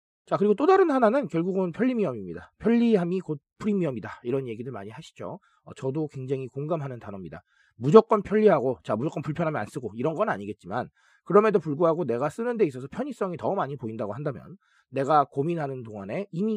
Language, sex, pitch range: Korean, male, 135-215 Hz